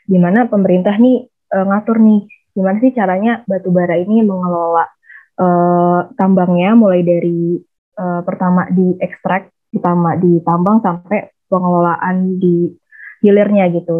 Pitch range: 180-205 Hz